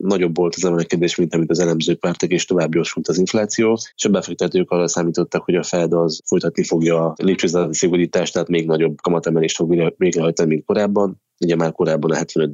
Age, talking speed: 20-39, 190 wpm